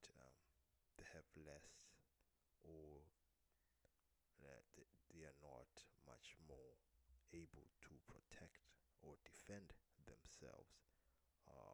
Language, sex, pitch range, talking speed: English, male, 65-80 Hz, 85 wpm